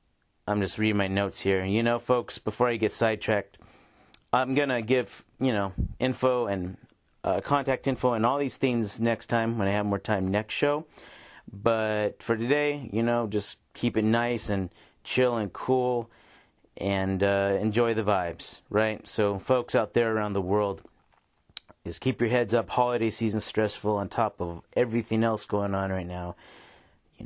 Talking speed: 180 wpm